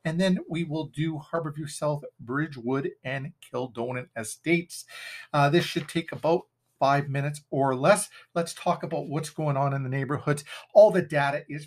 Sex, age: male, 50-69